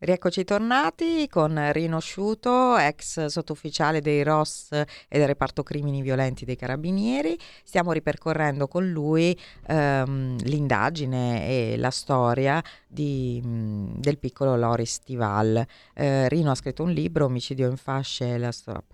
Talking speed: 125 wpm